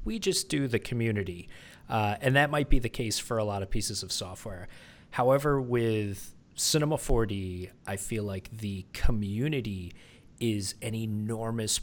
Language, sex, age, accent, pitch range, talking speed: English, male, 30-49, American, 100-125 Hz, 155 wpm